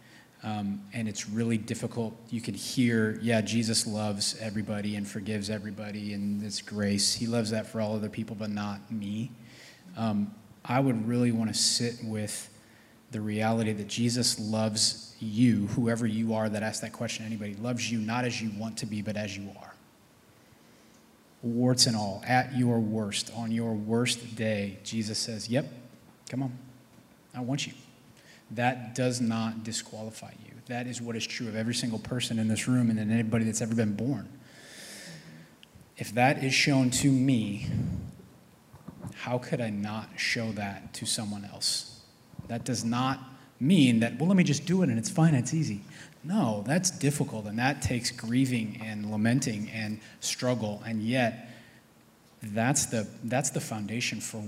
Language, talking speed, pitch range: English, 170 wpm, 110-125 Hz